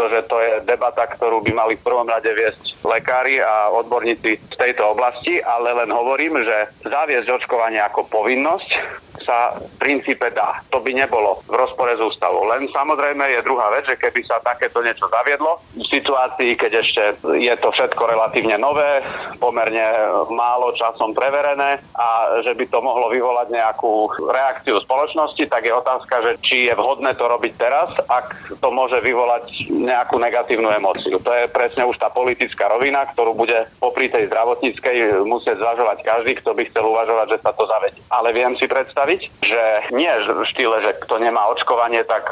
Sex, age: male, 40-59